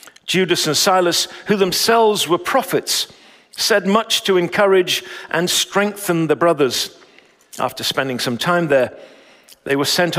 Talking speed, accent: 135 wpm, British